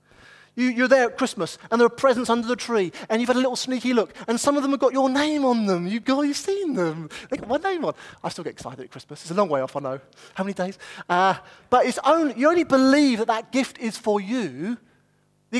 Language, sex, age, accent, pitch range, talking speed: English, male, 30-49, British, 160-255 Hz, 255 wpm